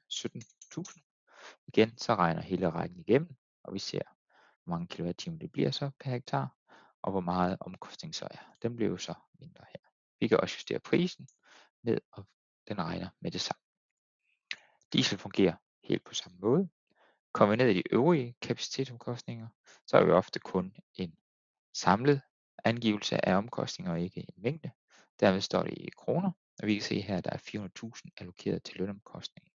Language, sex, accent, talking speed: Danish, male, native, 175 wpm